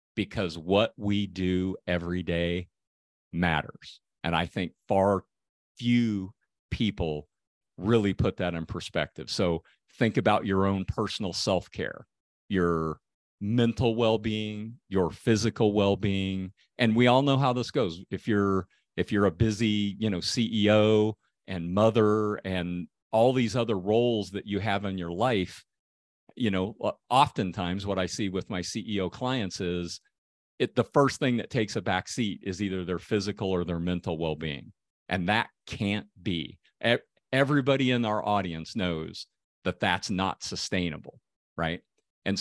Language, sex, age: English, male, 50-69